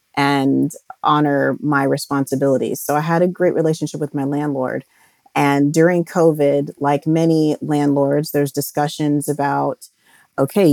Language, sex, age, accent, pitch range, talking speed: English, female, 30-49, American, 145-165 Hz, 130 wpm